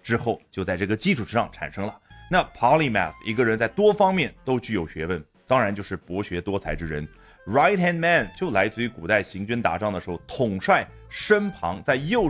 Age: 30-49